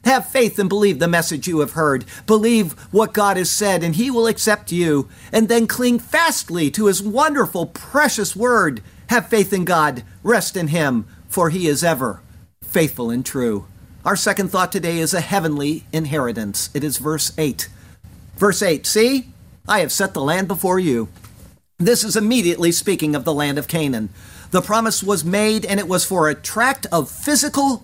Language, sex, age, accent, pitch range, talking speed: English, male, 50-69, American, 150-210 Hz, 185 wpm